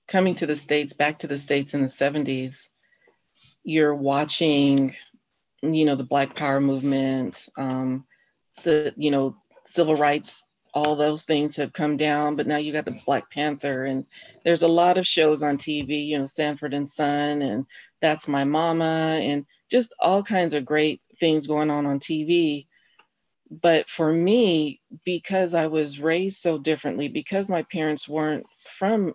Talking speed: 165 wpm